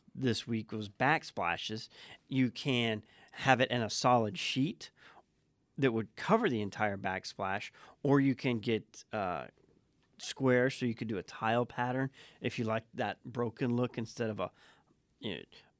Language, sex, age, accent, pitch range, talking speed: English, male, 40-59, American, 110-135 Hz, 155 wpm